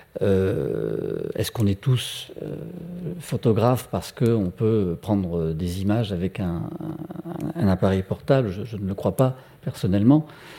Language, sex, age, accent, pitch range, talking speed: French, male, 50-69, French, 95-125 Hz, 155 wpm